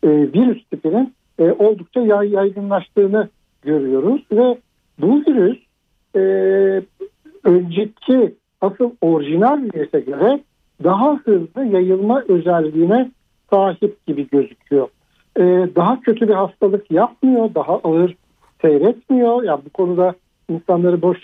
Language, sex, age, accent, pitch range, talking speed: Turkish, male, 60-79, native, 175-235 Hz, 105 wpm